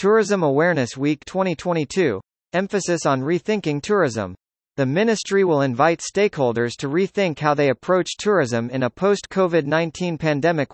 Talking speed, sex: 130 wpm, male